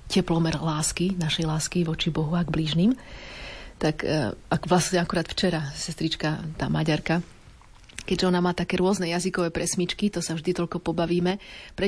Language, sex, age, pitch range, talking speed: Slovak, female, 30-49, 170-195 Hz, 150 wpm